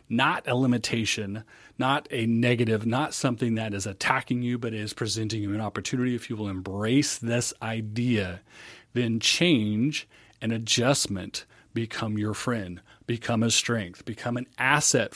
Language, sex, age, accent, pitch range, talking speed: English, male, 40-59, American, 110-125 Hz, 145 wpm